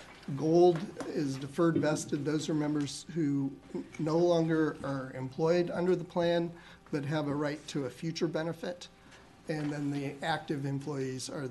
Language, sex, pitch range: English, male, 135-165 Hz